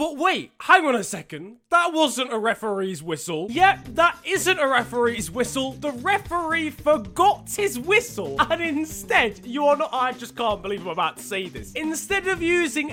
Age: 20-39